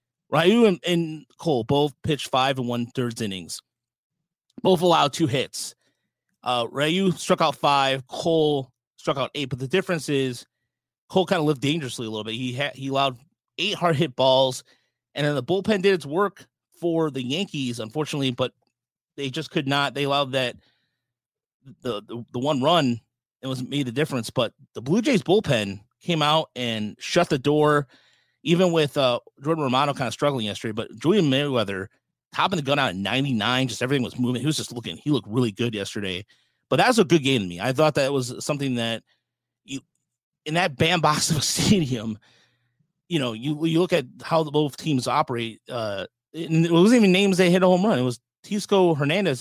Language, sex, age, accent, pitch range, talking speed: English, male, 30-49, American, 125-160 Hz, 195 wpm